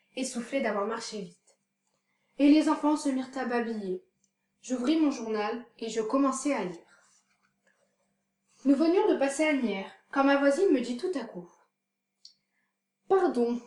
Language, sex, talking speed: French, female, 155 wpm